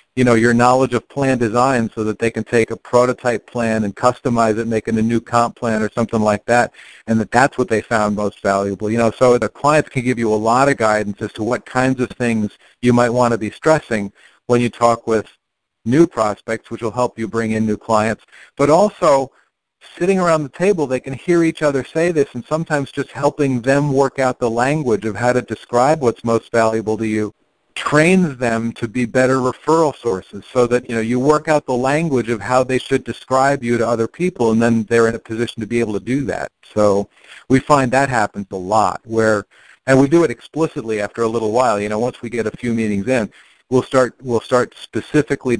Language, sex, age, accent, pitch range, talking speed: English, male, 50-69, American, 115-135 Hz, 230 wpm